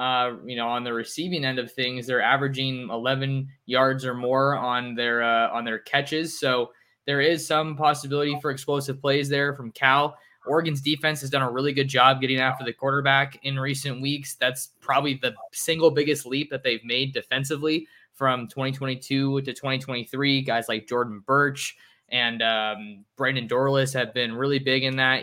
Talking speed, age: 180 wpm, 20-39